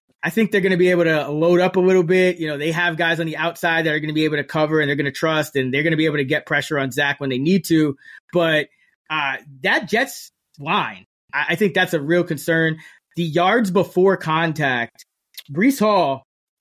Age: 20-39